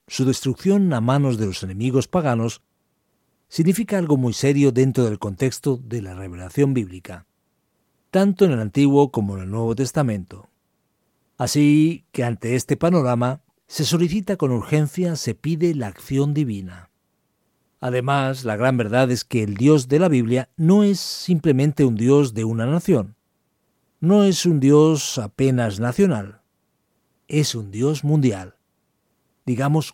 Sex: male